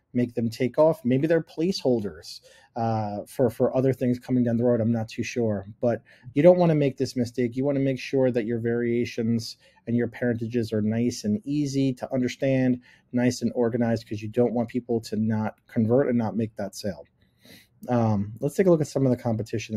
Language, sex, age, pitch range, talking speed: English, male, 30-49, 110-125 Hz, 215 wpm